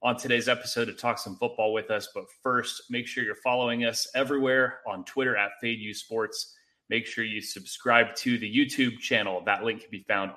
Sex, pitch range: male, 110-145 Hz